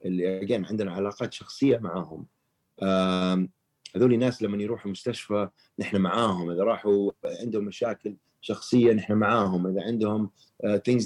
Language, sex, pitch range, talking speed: Arabic, male, 95-120 Hz, 135 wpm